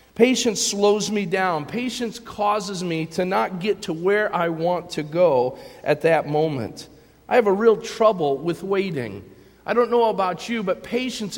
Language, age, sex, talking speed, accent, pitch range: English, 40-59, male, 175 wpm, American, 160-220 Hz